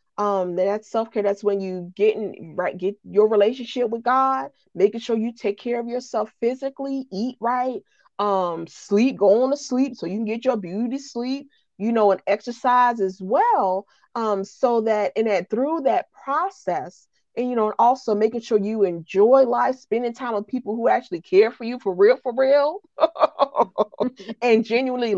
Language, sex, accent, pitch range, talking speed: English, female, American, 200-255 Hz, 180 wpm